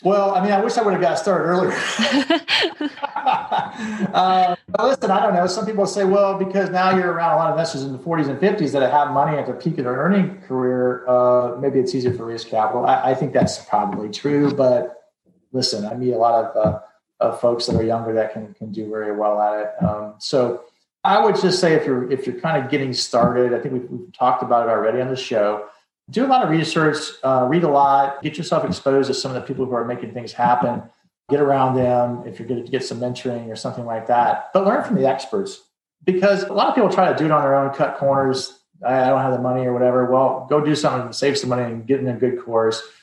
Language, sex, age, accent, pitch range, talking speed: English, male, 40-59, American, 125-175 Hz, 250 wpm